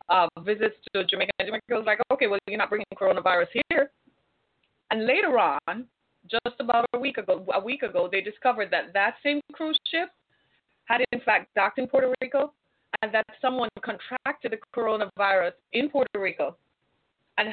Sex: female